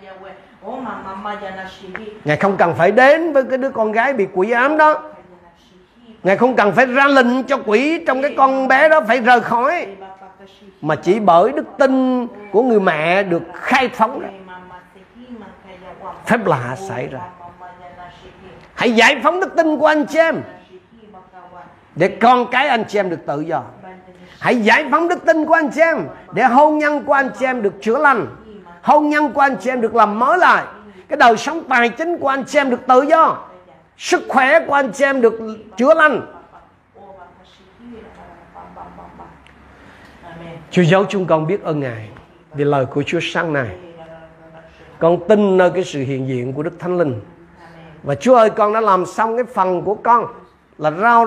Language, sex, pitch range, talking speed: Vietnamese, male, 175-255 Hz, 175 wpm